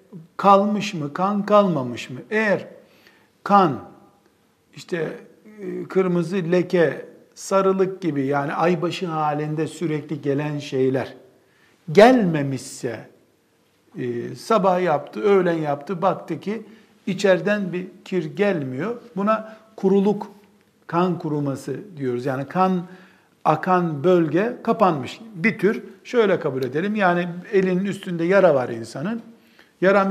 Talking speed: 100 wpm